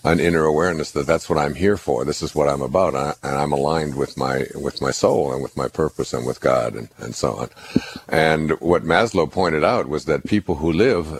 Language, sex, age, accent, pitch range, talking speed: English, male, 60-79, American, 70-85 Hz, 230 wpm